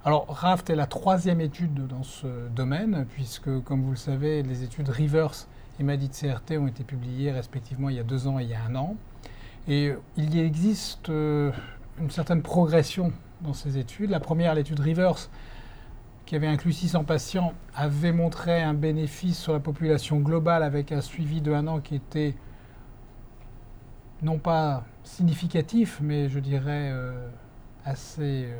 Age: 40-59